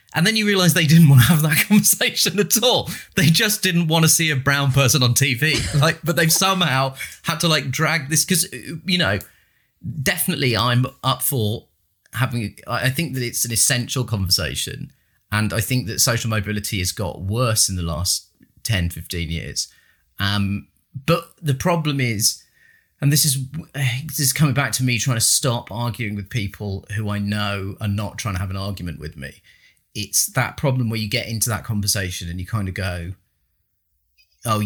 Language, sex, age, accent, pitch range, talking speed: English, male, 30-49, British, 100-135 Hz, 190 wpm